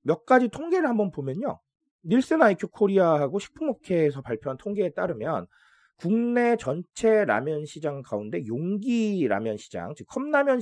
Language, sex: Korean, male